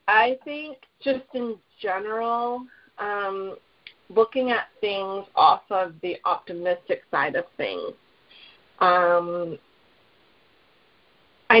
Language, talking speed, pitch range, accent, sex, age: English, 95 wpm, 180-230 Hz, American, female, 30-49